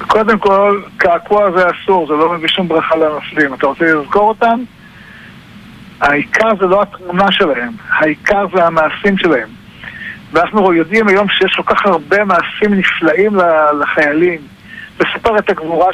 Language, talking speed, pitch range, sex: Hebrew, 140 wpm, 175-220 Hz, male